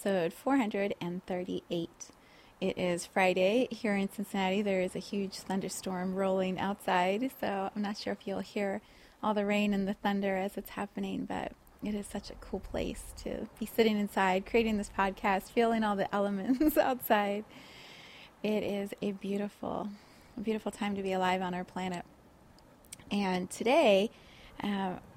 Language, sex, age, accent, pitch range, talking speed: English, female, 30-49, American, 190-225 Hz, 155 wpm